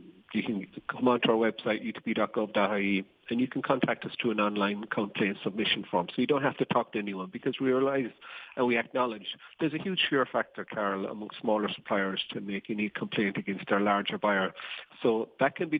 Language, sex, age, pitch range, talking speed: English, male, 40-59, 105-130 Hz, 200 wpm